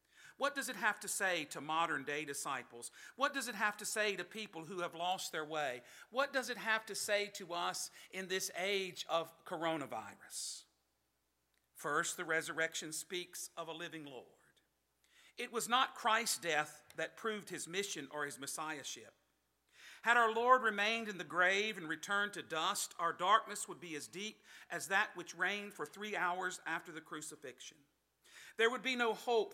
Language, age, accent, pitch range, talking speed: English, 50-69, American, 160-210 Hz, 180 wpm